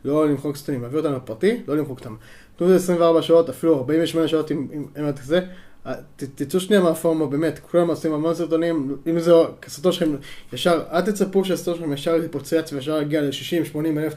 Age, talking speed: 20-39, 180 wpm